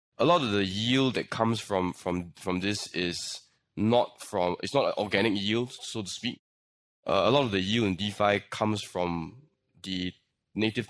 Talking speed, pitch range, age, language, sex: 185 wpm, 95-115 Hz, 20-39, English, male